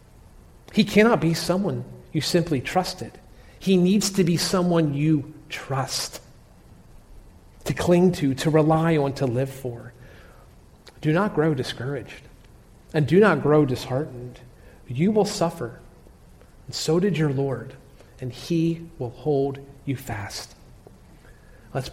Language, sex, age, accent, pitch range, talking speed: English, male, 40-59, American, 120-145 Hz, 130 wpm